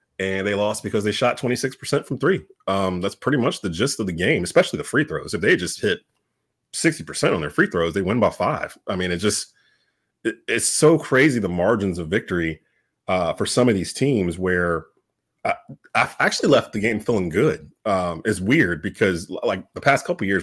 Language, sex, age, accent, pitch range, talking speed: English, male, 30-49, American, 95-135 Hz, 210 wpm